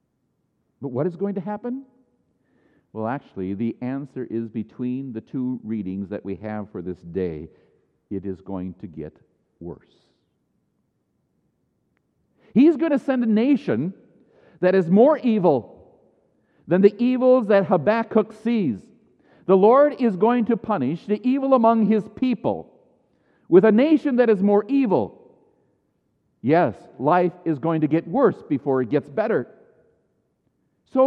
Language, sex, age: English, male, 50-69